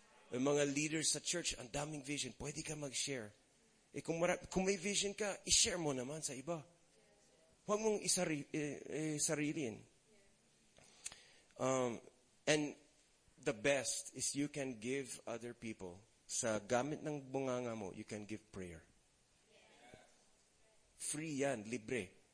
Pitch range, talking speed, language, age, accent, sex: 125-160 Hz, 135 wpm, English, 30-49, Filipino, male